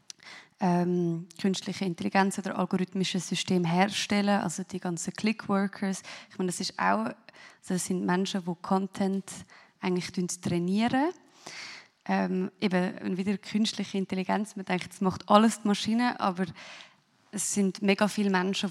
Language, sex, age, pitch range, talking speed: German, female, 20-39, 185-210 Hz, 130 wpm